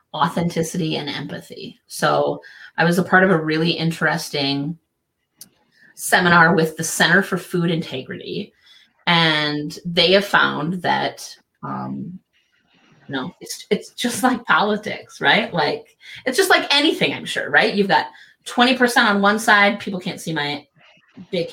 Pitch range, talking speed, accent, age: 160-210 Hz, 140 wpm, American, 30-49